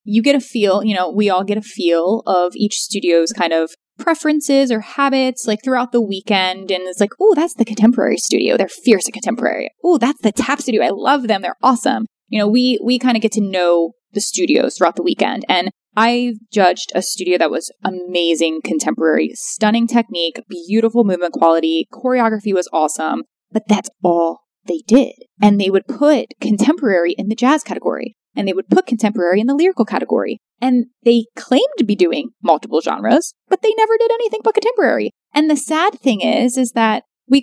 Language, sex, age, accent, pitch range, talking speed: English, female, 20-39, American, 195-260 Hz, 195 wpm